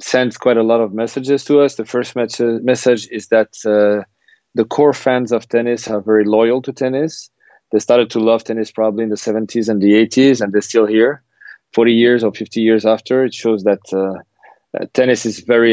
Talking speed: 210 wpm